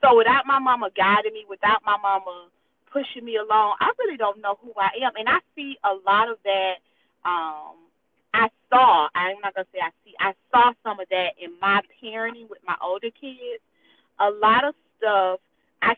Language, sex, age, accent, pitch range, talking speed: English, female, 30-49, American, 195-255 Hz, 195 wpm